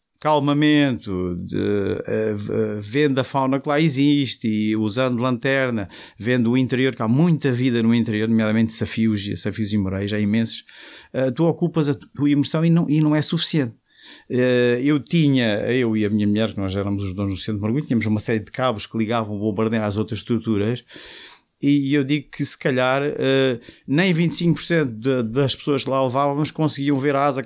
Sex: male